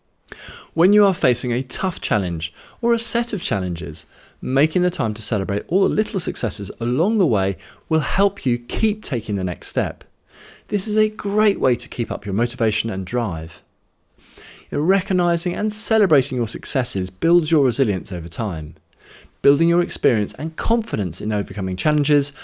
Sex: male